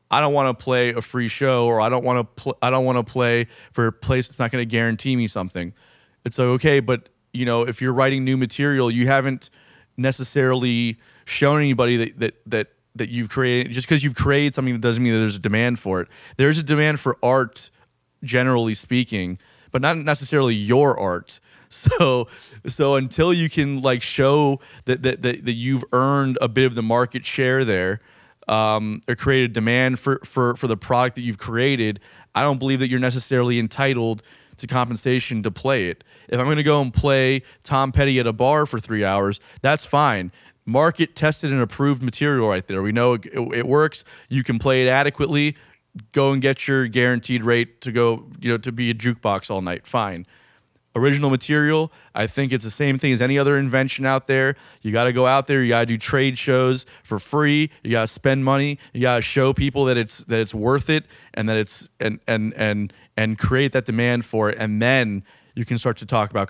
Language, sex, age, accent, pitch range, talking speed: English, male, 30-49, American, 115-135 Hz, 215 wpm